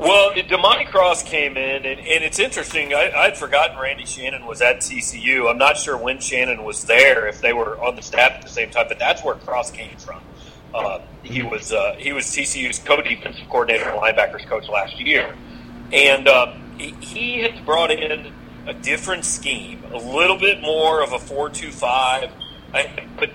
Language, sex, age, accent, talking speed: English, male, 40-59, American, 190 wpm